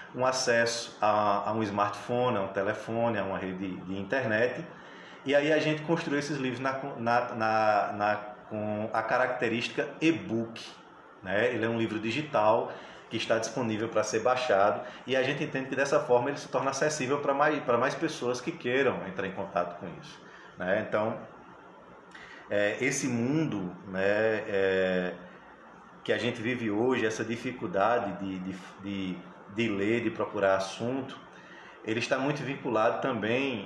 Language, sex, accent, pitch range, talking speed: Portuguese, male, Brazilian, 105-135 Hz, 150 wpm